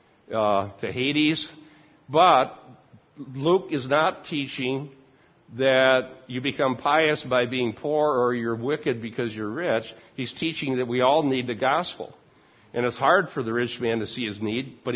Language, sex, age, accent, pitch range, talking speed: English, male, 60-79, American, 120-145 Hz, 165 wpm